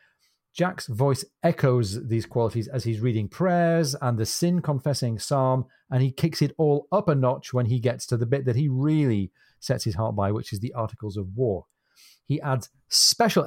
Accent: British